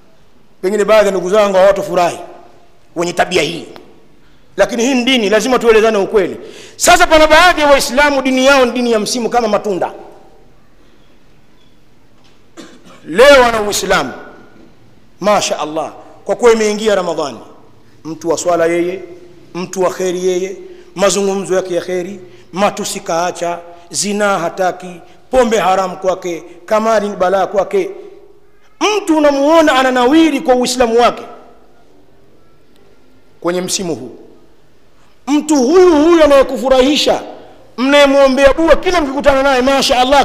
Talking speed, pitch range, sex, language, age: 120 wpm, 185-295 Hz, male, Swahili, 50-69